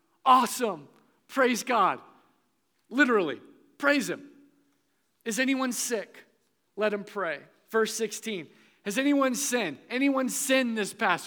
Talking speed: 110 wpm